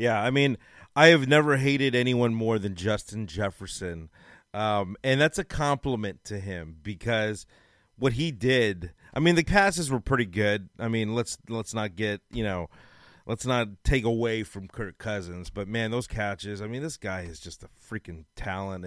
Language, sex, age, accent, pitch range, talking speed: English, male, 30-49, American, 105-135 Hz, 185 wpm